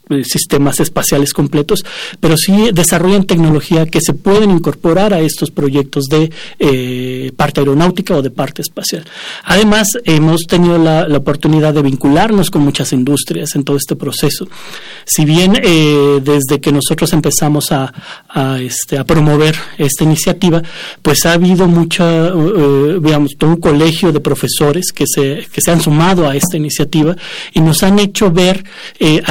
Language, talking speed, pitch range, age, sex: Spanish, 160 wpm, 145-180 Hz, 40-59, male